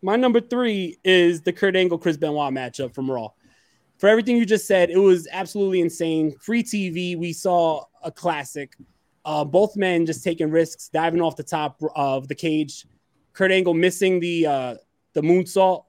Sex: male